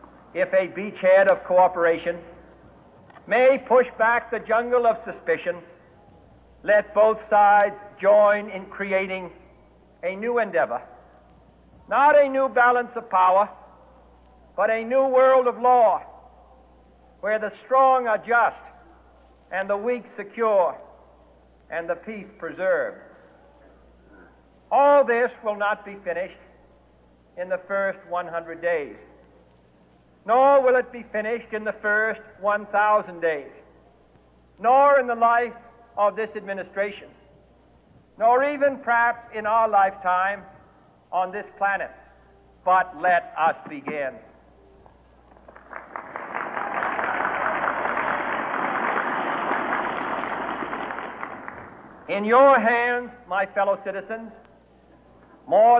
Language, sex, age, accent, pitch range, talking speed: Indonesian, male, 60-79, American, 185-235 Hz, 100 wpm